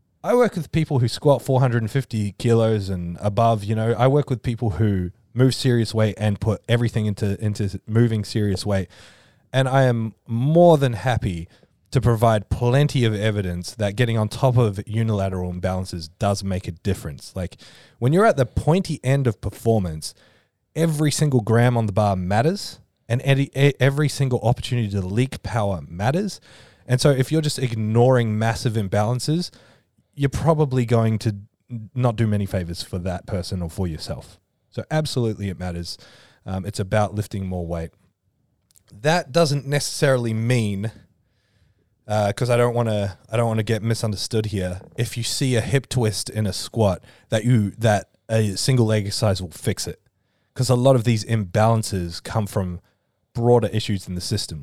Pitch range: 100-125 Hz